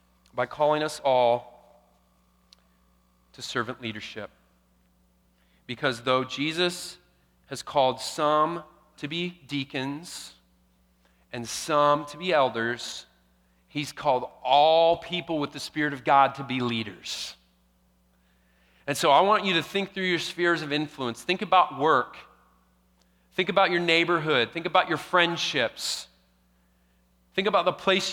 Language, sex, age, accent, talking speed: English, male, 40-59, American, 130 wpm